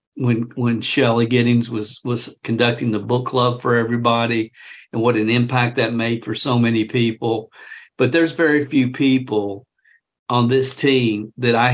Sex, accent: male, American